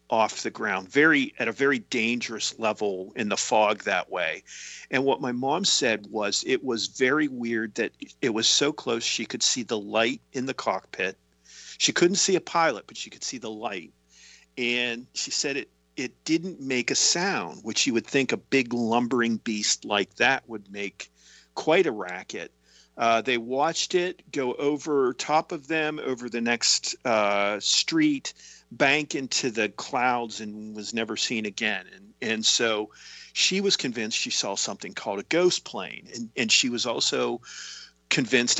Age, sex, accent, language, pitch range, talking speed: 50-69, male, American, English, 105-150 Hz, 175 wpm